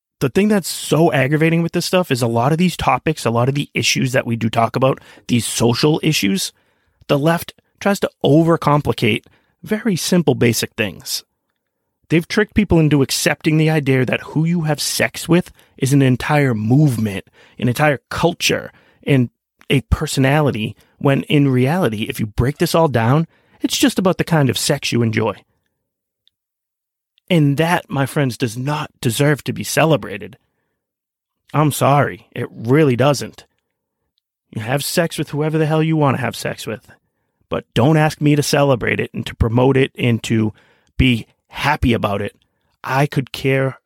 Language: English